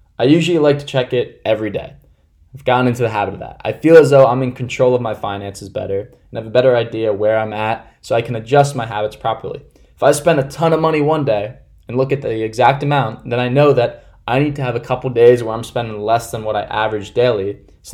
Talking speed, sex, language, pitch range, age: 260 wpm, male, English, 105-135 Hz, 20-39